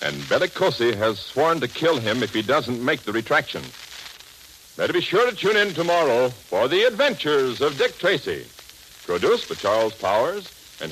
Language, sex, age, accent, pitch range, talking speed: English, male, 60-79, American, 105-155 Hz, 170 wpm